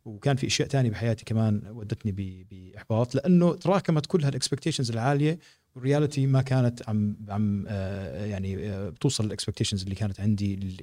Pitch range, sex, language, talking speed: 100-125 Hz, male, English, 155 wpm